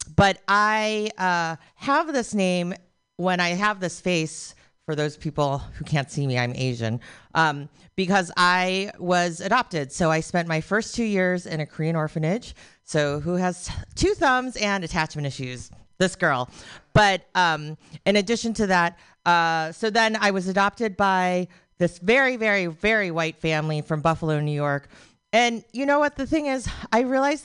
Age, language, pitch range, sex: 40-59, English, 160-225 Hz, female